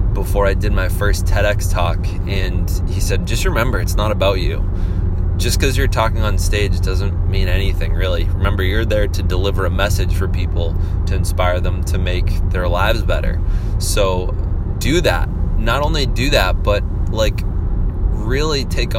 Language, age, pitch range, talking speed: English, 20-39, 90-105 Hz, 170 wpm